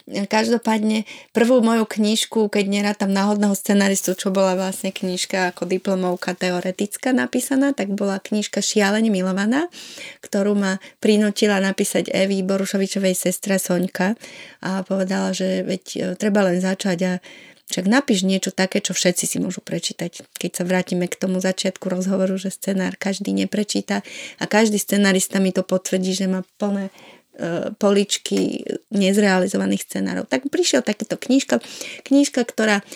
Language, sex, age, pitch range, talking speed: Slovak, female, 30-49, 190-220 Hz, 135 wpm